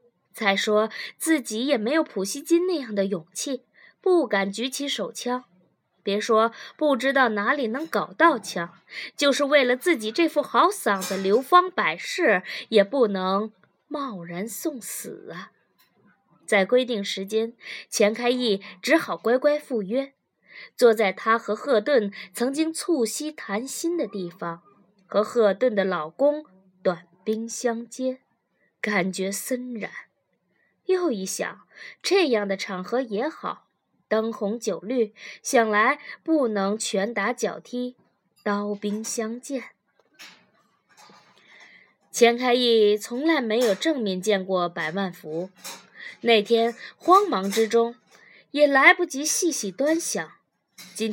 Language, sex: Chinese, female